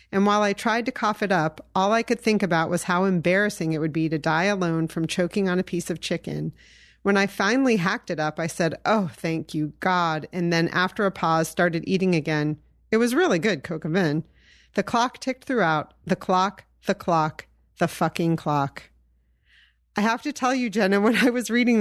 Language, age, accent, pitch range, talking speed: English, 40-59, American, 165-205 Hz, 205 wpm